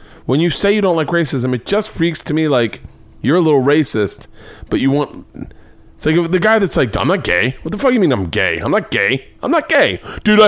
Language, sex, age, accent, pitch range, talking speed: English, male, 30-49, American, 135-180 Hz, 250 wpm